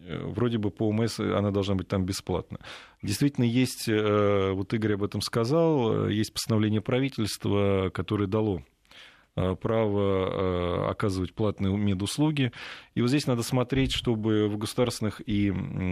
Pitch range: 95-120 Hz